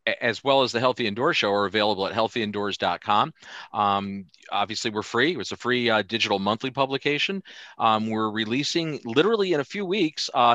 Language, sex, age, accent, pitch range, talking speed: English, male, 40-59, American, 105-130 Hz, 175 wpm